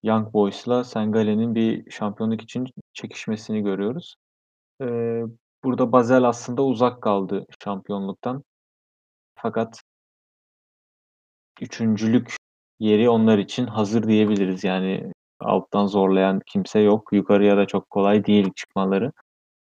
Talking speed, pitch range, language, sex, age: 100 wpm, 100-120 Hz, Turkish, male, 30-49